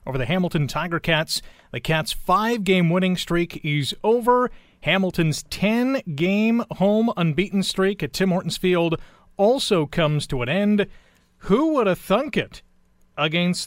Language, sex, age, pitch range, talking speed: English, male, 40-59, 150-195 Hz, 140 wpm